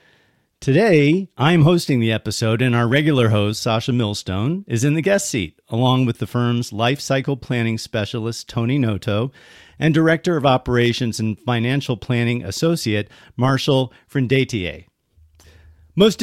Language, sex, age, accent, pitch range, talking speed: English, male, 40-59, American, 105-140 Hz, 135 wpm